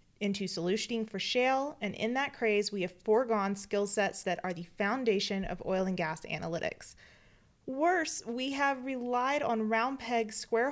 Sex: female